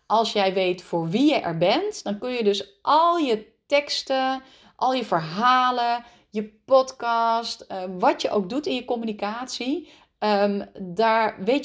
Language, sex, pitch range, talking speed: Dutch, female, 190-255 Hz, 150 wpm